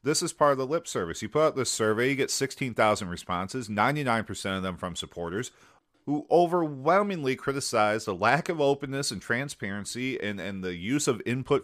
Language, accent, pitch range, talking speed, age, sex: English, American, 105-140 Hz, 185 wpm, 40-59, male